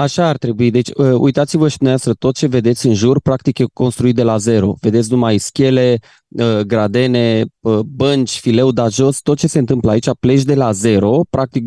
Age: 20-39